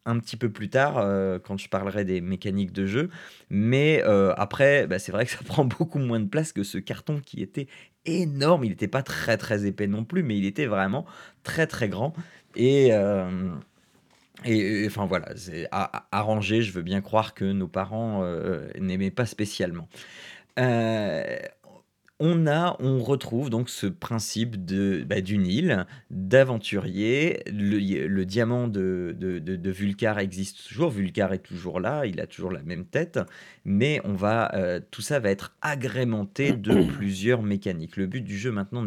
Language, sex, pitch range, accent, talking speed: French, male, 100-135 Hz, French, 180 wpm